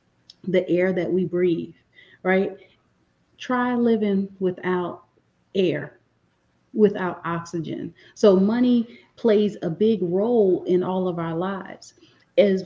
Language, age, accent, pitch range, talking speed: English, 30-49, American, 180-210 Hz, 115 wpm